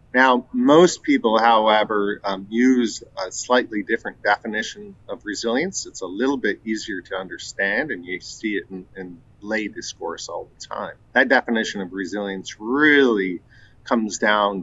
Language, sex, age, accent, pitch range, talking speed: English, male, 40-59, American, 100-120 Hz, 150 wpm